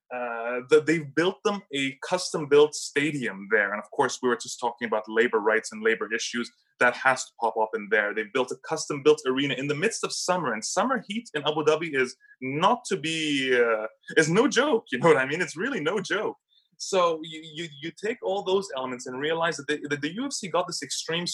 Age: 20-39